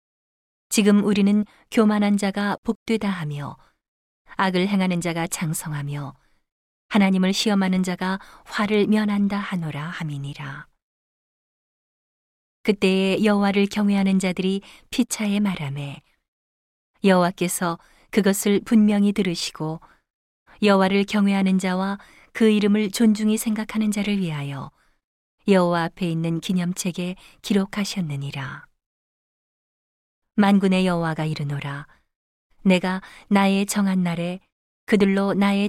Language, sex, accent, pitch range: Korean, female, native, 170-205 Hz